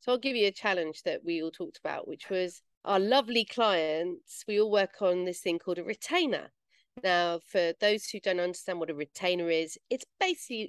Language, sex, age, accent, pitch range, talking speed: English, female, 40-59, British, 175-235 Hz, 210 wpm